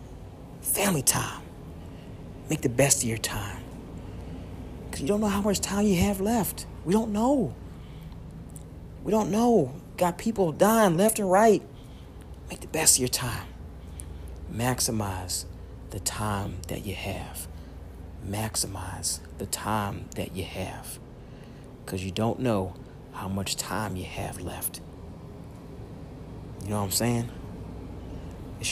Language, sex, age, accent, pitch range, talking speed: English, male, 40-59, American, 95-150 Hz, 135 wpm